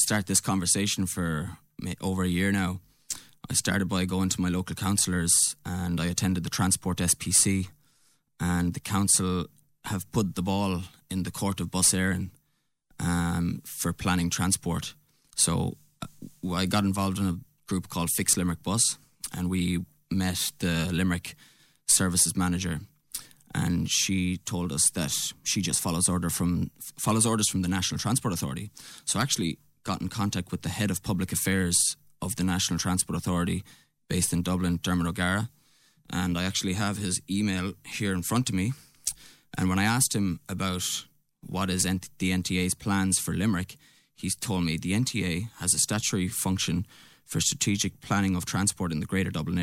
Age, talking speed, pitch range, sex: 20-39, 165 wpm, 90-100 Hz, male